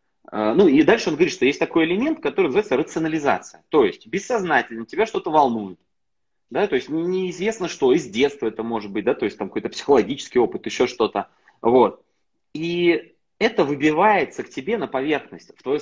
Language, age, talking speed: Russian, 30-49, 180 wpm